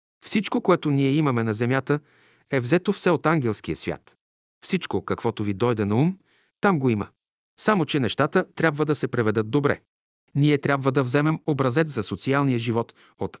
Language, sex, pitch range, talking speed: Bulgarian, male, 115-155 Hz, 170 wpm